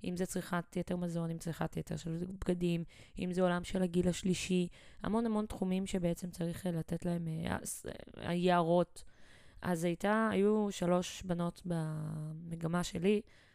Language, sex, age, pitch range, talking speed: Hebrew, female, 20-39, 165-185 Hz, 145 wpm